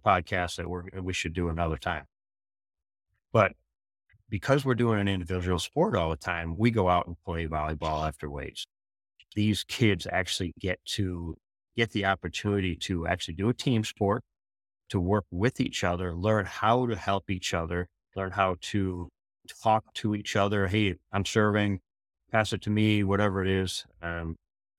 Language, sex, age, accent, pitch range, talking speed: English, male, 30-49, American, 85-105 Hz, 165 wpm